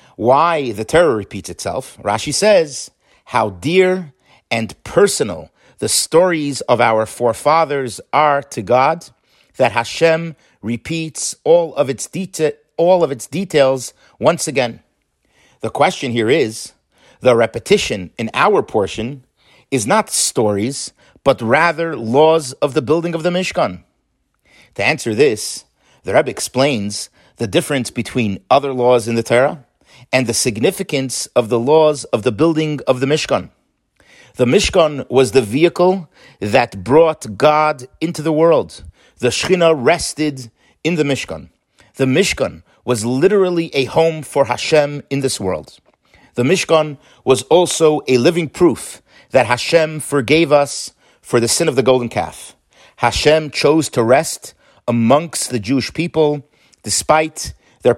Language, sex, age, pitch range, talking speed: English, male, 50-69, 120-160 Hz, 140 wpm